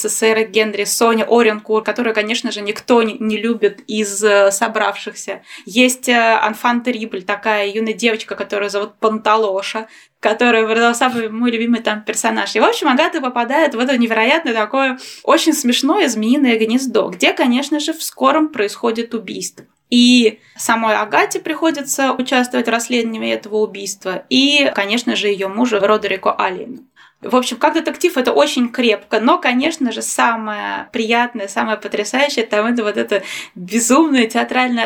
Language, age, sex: Russian, 20-39, female